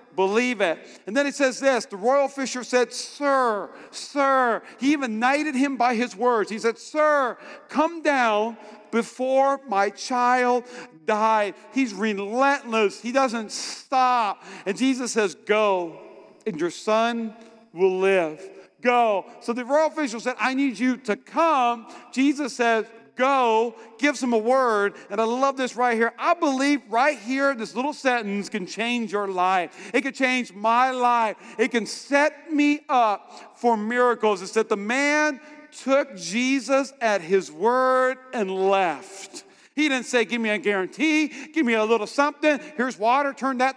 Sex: male